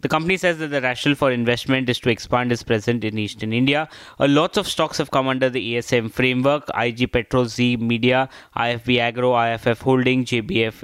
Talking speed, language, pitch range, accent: 190 wpm, English, 120-145 Hz, Indian